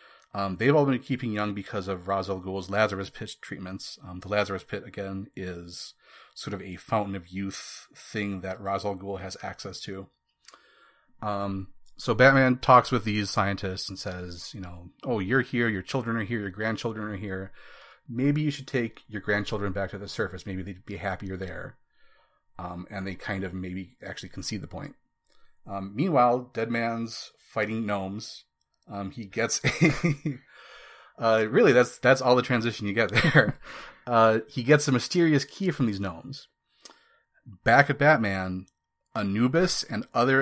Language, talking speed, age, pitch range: English, 170 wpm, 30-49, 95-125 Hz